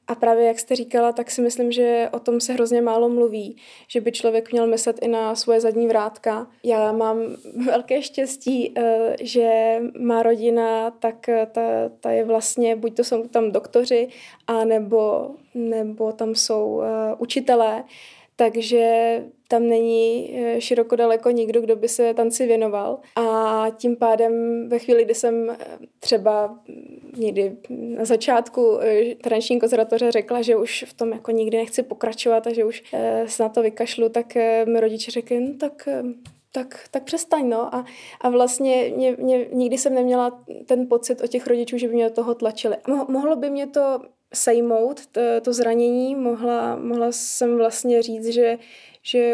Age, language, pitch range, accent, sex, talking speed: 20-39, Czech, 225-245 Hz, native, female, 160 wpm